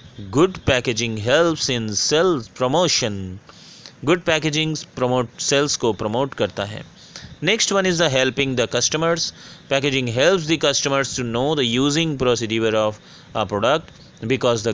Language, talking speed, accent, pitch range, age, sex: Hindi, 145 wpm, native, 125-165 Hz, 30-49, male